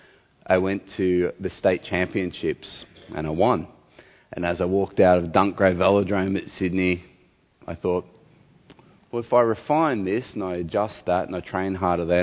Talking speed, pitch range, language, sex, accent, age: 170 wpm, 90-105 Hz, English, male, Australian, 30-49